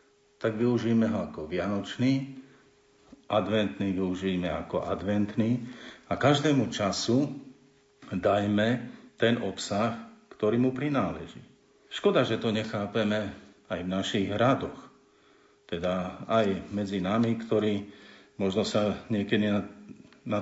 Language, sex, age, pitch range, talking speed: Slovak, male, 50-69, 95-120 Hz, 105 wpm